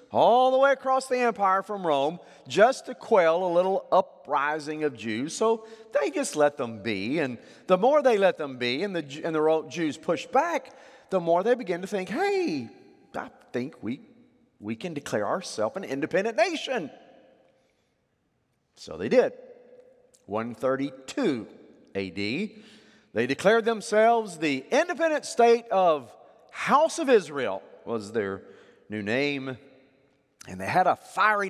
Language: English